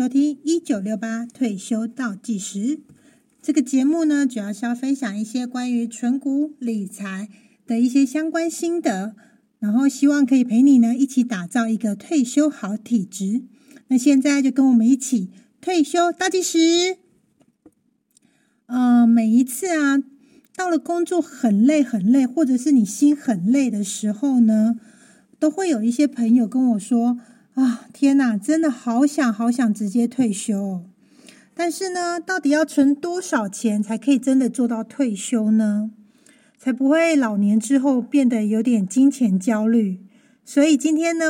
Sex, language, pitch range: female, Chinese, 225-285 Hz